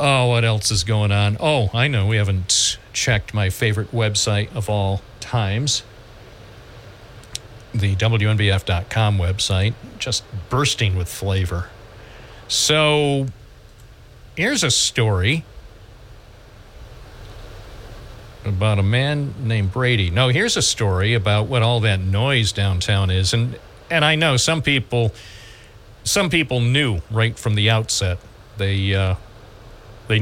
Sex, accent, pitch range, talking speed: male, American, 100-120 Hz, 120 wpm